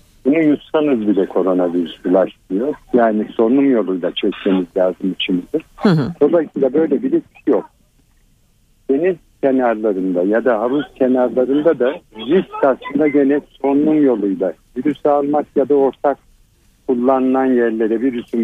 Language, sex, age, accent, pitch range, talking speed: Turkish, male, 60-79, native, 110-140 Hz, 115 wpm